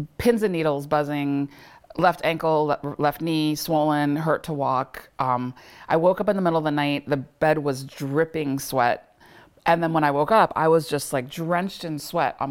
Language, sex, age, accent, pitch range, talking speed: English, female, 30-49, American, 145-180 Hz, 195 wpm